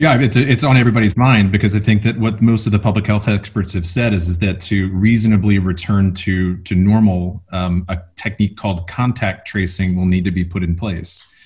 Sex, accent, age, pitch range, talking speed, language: male, American, 30-49, 90-105 Hz, 220 wpm, English